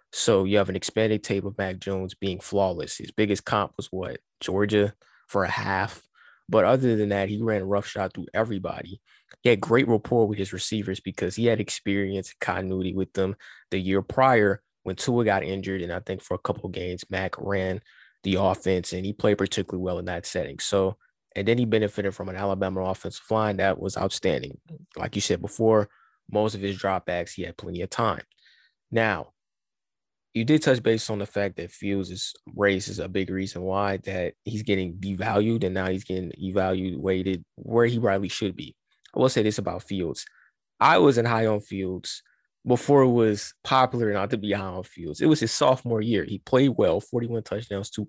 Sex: male